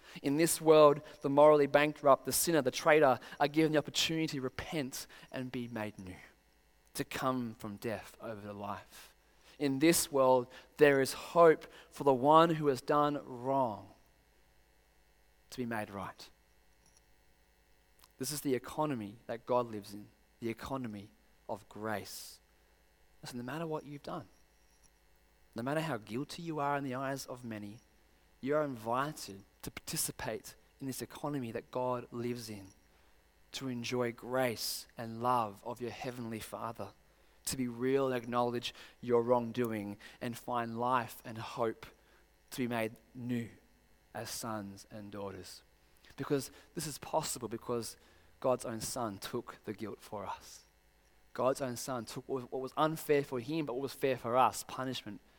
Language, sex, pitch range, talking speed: English, male, 105-140 Hz, 155 wpm